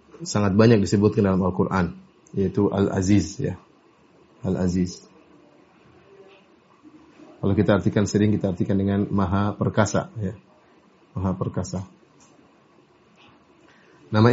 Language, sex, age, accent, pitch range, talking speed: Indonesian, male, 30-49, native, 100-115 Hz, 105 wpm